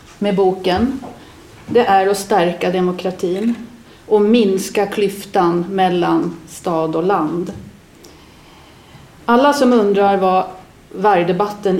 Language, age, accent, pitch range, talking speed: Swedish, 40-59, native, 185-235 Hz, 95 wpm